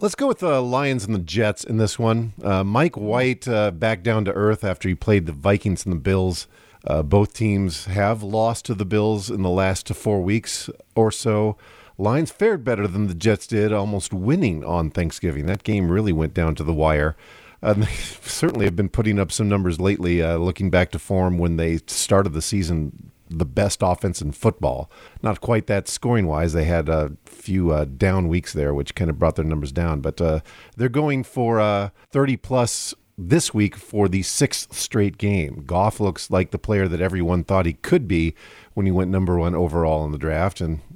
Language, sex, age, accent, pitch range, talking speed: English, male, 50-69, American, 85-110 Hz, 210 wpm